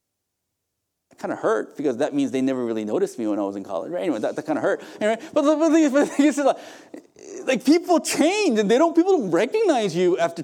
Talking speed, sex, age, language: 255 wpm, male, 40-59, English